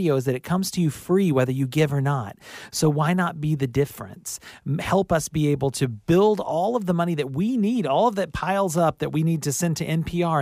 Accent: American